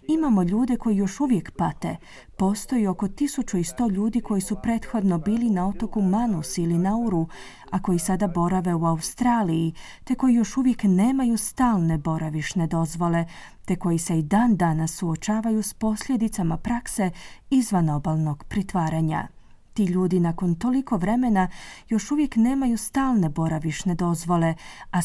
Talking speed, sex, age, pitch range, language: 135 wpm, female, 30-49, 170-230 Hz, Croatian